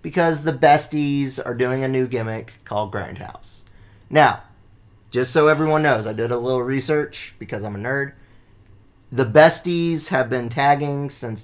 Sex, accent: male, American